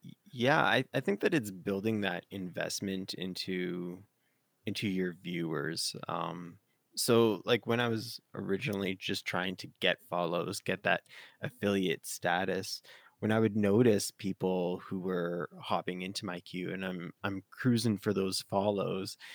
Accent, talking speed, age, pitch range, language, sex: American, 145 wpm, 20-39, 95-110 Hz, English, male